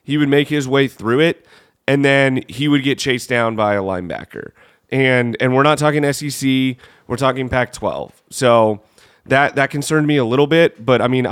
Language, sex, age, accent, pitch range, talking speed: English, male, 30-49, American, 115-145 Hz, 195 wpm